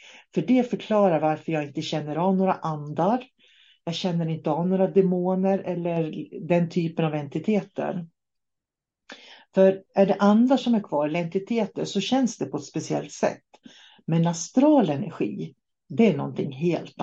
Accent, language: native, Swedish